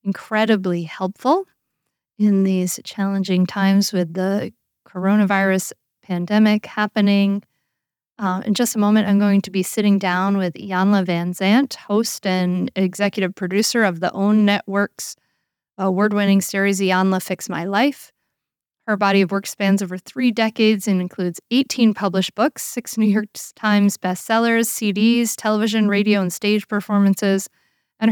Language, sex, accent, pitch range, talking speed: English, female, American, 190-220 Hz, 140 wpm